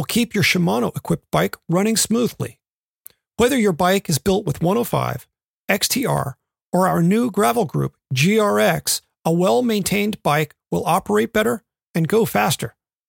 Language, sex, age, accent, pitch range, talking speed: English, male, 40-59, American, 185-230 Hz, 140 wpm